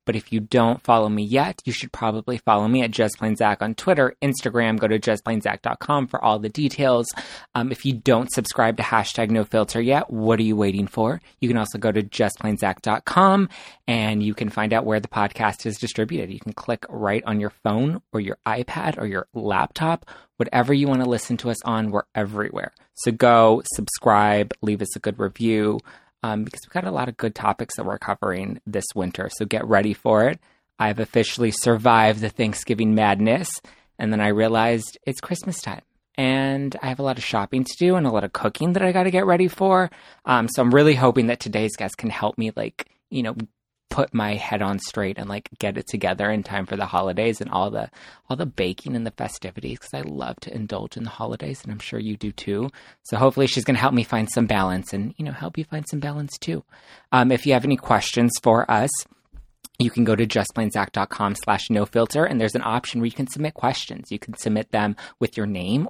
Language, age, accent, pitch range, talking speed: English, 20-39, American, 105-130 Hz, 220 wpm